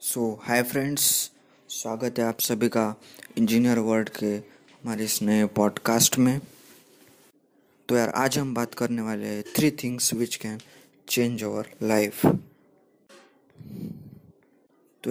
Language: Hindi